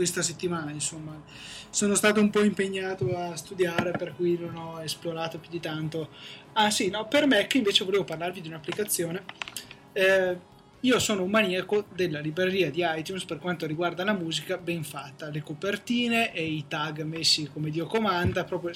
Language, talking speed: Italian, 175 wpm